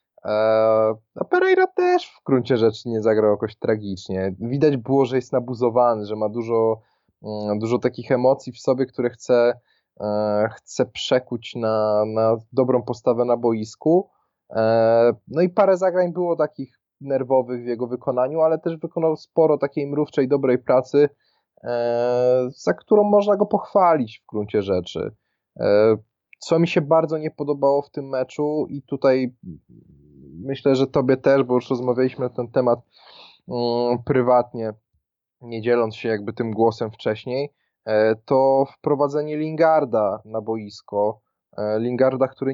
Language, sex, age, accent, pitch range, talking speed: Polish, male, 20-39, native, 110-140 Hz, 140 wpm